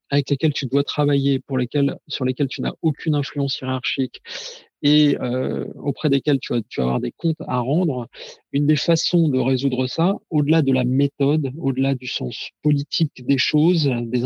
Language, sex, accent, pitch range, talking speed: French, male, French, 130-160 Hz, 185 wpm